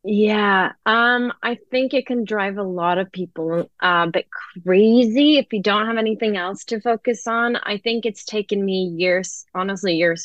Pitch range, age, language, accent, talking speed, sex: 175-205 Hz, 20-39, English, American, 185 wpm, female